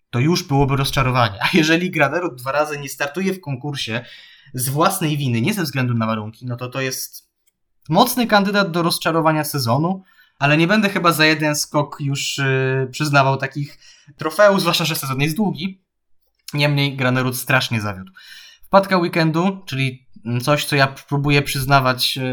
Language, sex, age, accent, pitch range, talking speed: Polish, male, 20-39, native, 135-170 Hz, 160 wpm